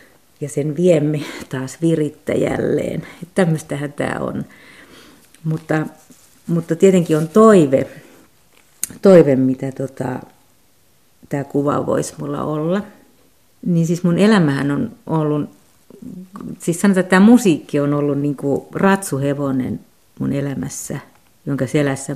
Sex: female